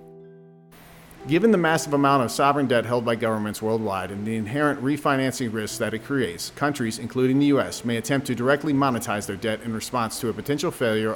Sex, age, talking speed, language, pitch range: male, 40-59, 195 wpm, English, 110-140 Hz